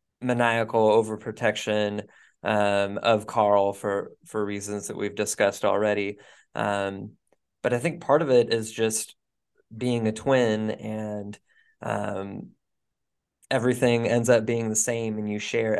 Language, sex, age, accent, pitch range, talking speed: English, male, 20-39, American, 105-125 Hz, 135 wpm